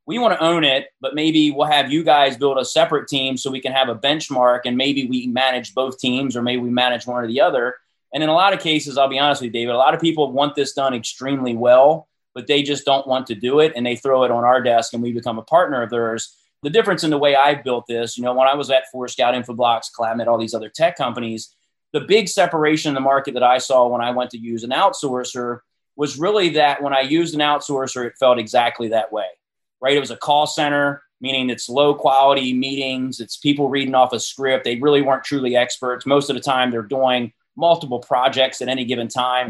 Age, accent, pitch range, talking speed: 30-49, American, 120-145 Hz, 250 wpm